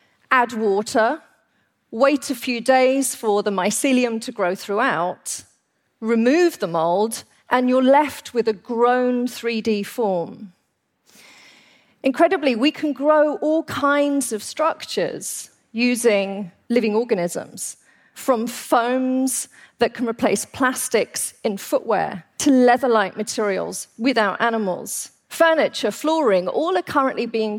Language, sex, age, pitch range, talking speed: English, female, 40-59, 220-270 Hz, 115 wpm